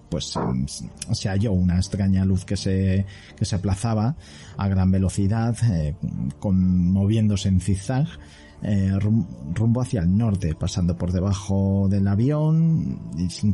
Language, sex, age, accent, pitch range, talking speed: Spanish, male, 30-49, Spanish, 90-110 Hz, 140 wpm